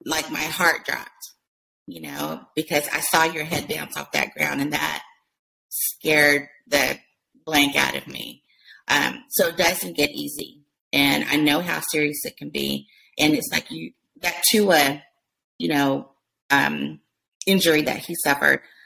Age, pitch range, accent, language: 30-49, 145-185 Hz, American, English